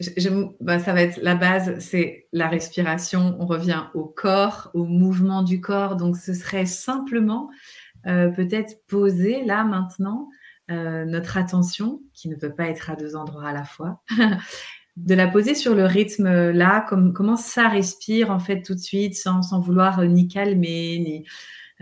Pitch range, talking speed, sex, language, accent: 170-200 Hz, 180 wpm, female, French, French